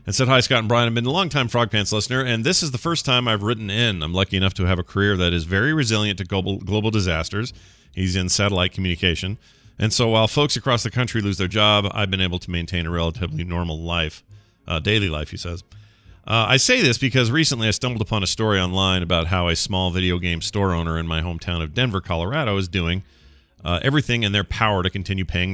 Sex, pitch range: male, 90-110 Hz